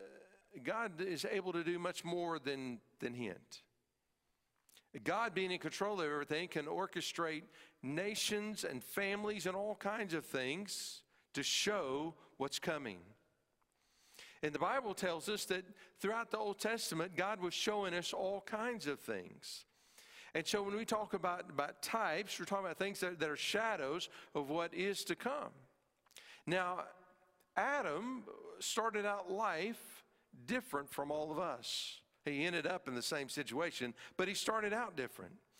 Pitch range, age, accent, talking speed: 160-210 Hz, 50-69, American, 155 wpm